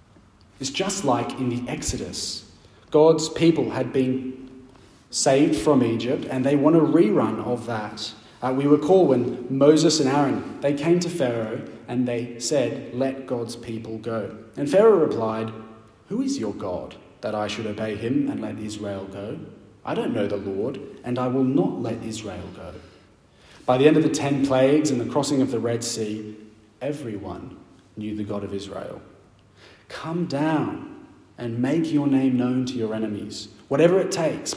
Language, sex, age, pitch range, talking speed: English, male, 30-49, 105-145 Hz, 170 wpm